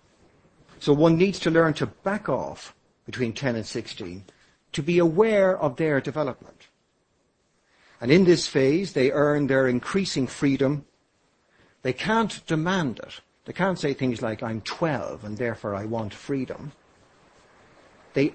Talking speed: 145 wpm